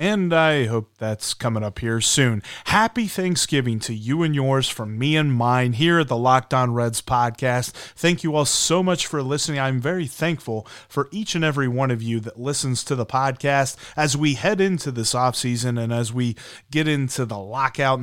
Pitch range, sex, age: 120-155 Hz, male, 30-49